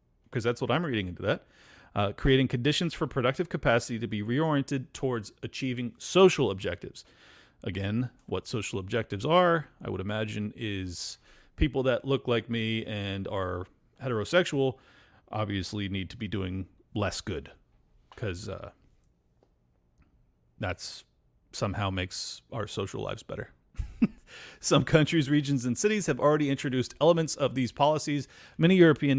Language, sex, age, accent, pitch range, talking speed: English, male, 40-59, American, 115-150 Hz, 140 wpm